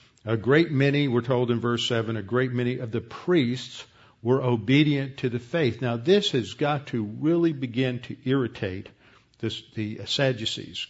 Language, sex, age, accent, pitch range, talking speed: English, male, 50-69, American, 110-130 Hz, 170 wpm